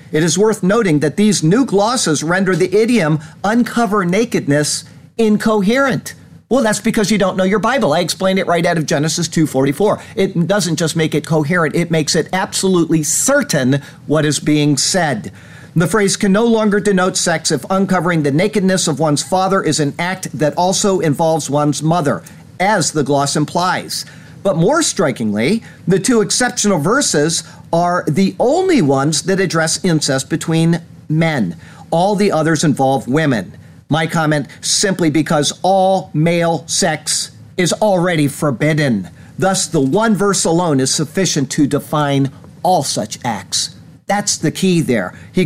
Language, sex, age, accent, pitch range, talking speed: English, male, 50-69, American, 150-200 Hz, 155 wpm